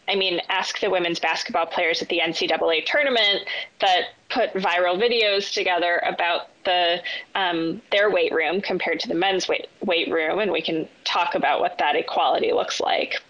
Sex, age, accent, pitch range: female, 20-39, American, 205-300 Hz